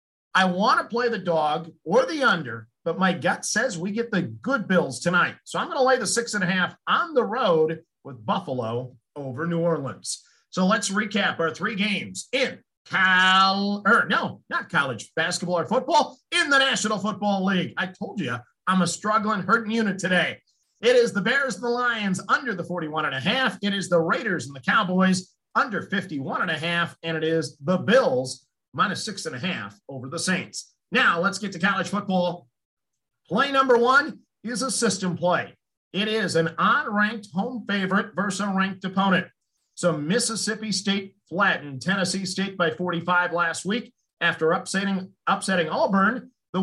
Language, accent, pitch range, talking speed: English, American, 175-220 Hz, 185 wpm